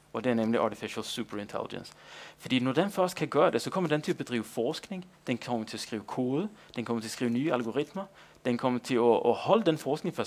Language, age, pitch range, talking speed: Danish, 30-49, 110-140 Hz, 240 wpm